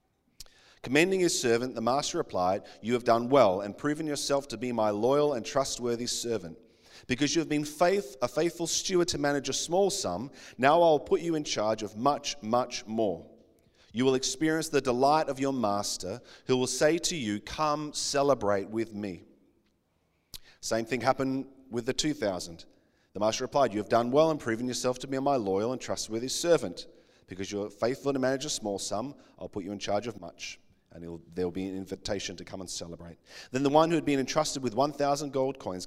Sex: male